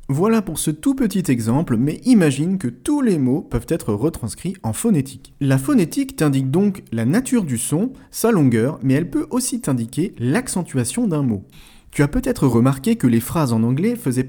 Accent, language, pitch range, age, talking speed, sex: French, French, 115-170 Hz, 40-59, 190 wpm, male